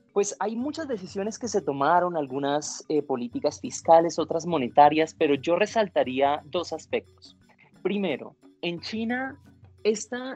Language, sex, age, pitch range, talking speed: Spanish, male, 30-49, 125-185 Hz, 125 wpm